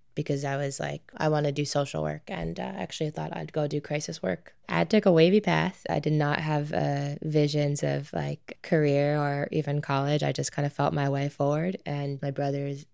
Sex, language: female, English